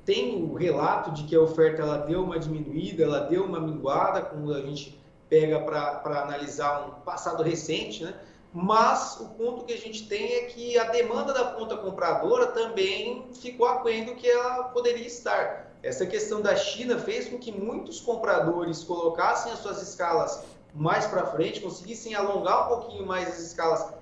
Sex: male